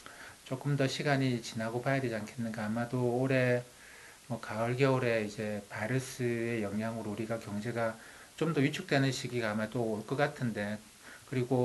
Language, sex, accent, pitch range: Korean, male, native, 120-150 Hz